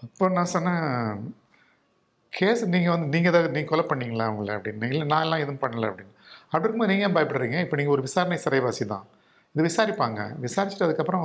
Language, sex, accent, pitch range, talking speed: Tamil, male, native, 130-175 Hz, 170 wpm